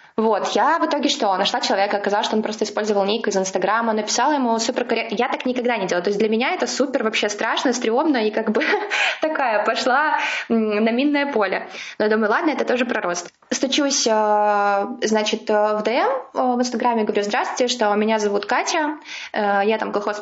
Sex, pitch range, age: female, 210-255 Hz, 20-39